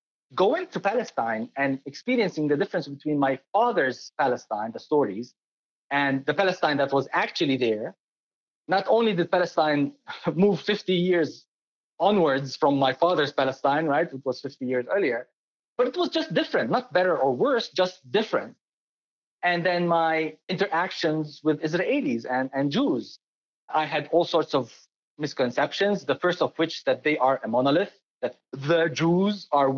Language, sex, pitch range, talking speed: English, male, 140-180 Hz, 155 wpm